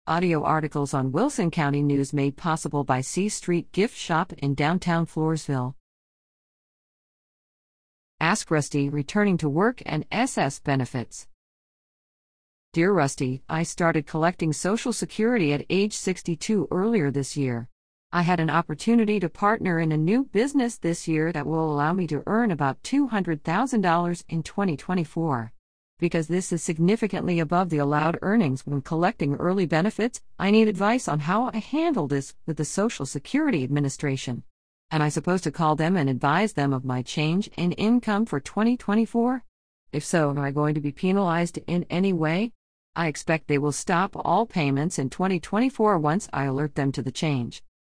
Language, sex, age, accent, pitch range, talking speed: English, female, 50-69, American, 145-195 Hz, 160 wpm